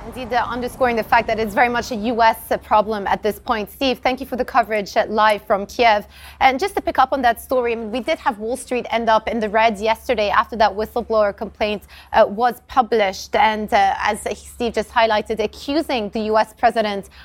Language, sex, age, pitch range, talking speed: English, female, 20-39, 210-245 Hz, 215 wpm